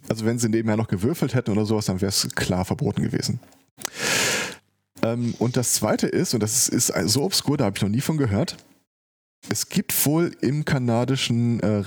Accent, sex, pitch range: German, male, 105-130 Hz